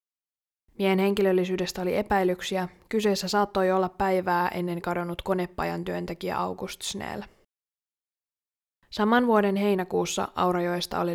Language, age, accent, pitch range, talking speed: Finnish, 20-39, native, 175-195 Hz, 100 wpm